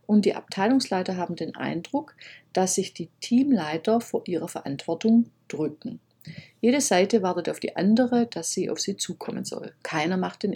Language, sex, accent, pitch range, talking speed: German, female, German, 170-225 Hz, 165 wpm